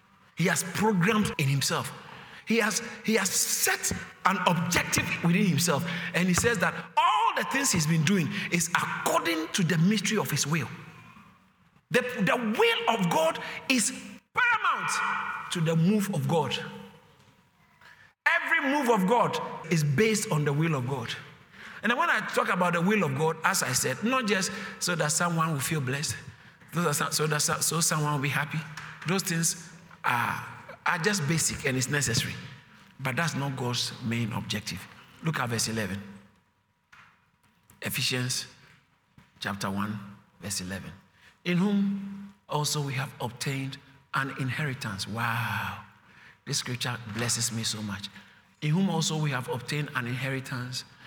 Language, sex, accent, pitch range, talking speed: English, male, Nigerian, 130-185 Hz, 155 wpm